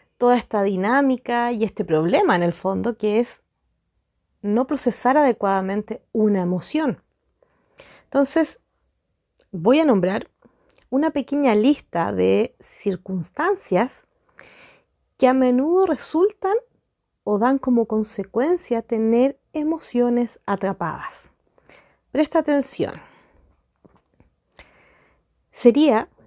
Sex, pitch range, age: female, 200-255 Hz, 30-49